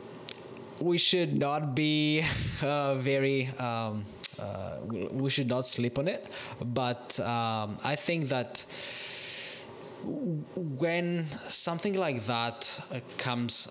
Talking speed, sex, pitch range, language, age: 110 wpm, male, 115-140 Hz, English, 20-39